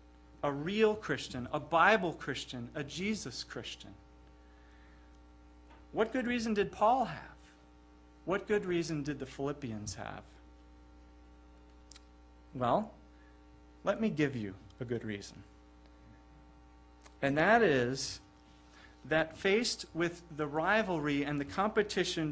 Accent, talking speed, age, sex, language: American, 110 wpm, 40-59, male, English